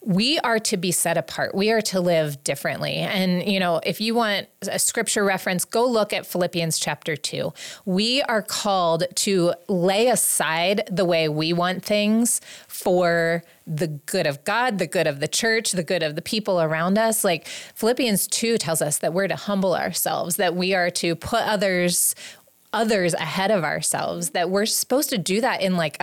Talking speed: 190 wpm